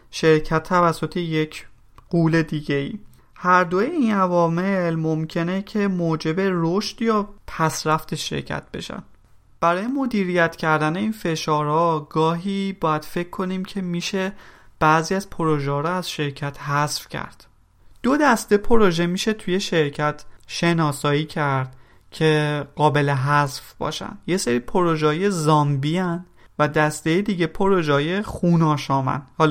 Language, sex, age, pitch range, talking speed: Persian, male, 30-49, 155-190 Hz, 125 wpm